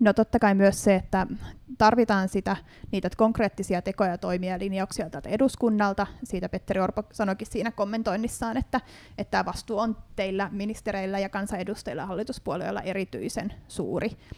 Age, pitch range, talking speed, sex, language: 30-49, 190-225 Hz, 140 wpm, female, Finnish